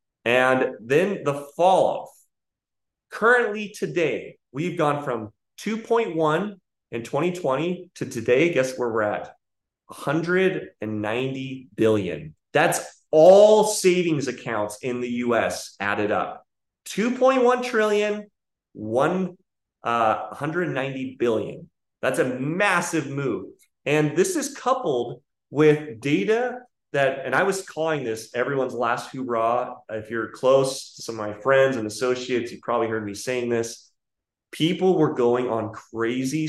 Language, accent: English, American